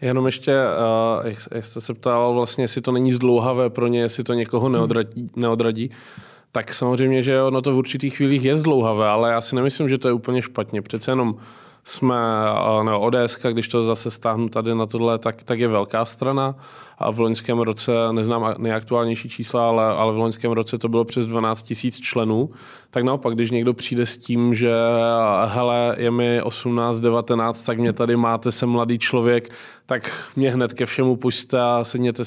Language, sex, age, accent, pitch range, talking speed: Czech, male, 20-39, native, 115-125 Hz, 185 wpm